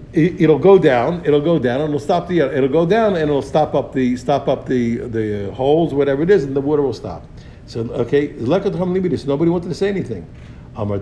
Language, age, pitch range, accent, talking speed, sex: English, 60-79, 110-145 Hz, American, 220 wpm, male